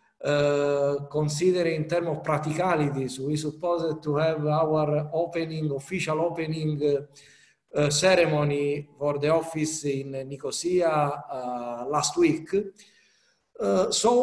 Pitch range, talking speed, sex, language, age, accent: 150-180 Hz, 115 wpm, male, Greek, 50-69, Italian